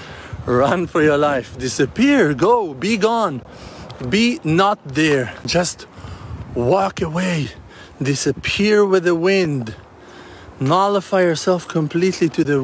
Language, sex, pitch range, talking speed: English, male, 130-175 Hz, 110 wpm